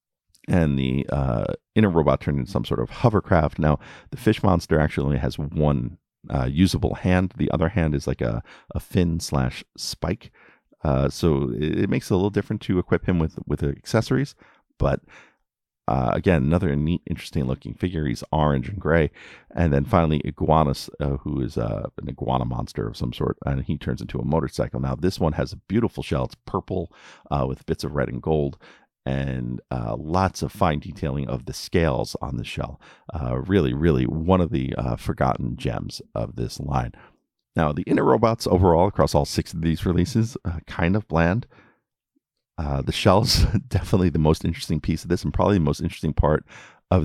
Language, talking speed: English, 195 wpm